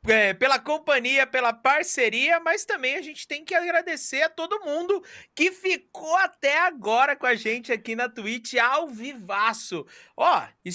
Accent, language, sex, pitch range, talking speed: Brazilian, Portuguese, male, 210-280 Hz, 155 wpm